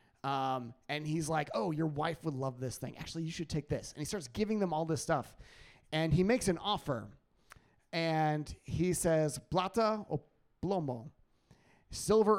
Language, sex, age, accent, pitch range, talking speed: English, male, 30-49, American, 140-175 Hz, 175 wpm